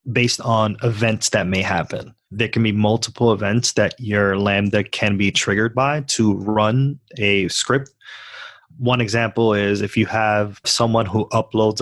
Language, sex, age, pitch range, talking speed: English, male, 20-39, 100-120 Hz, 155 wpm